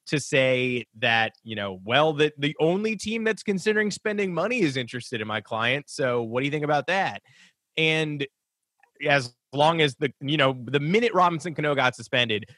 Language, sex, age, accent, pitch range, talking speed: English, male, 20-39, American, 125-160 Hz, 185 wpm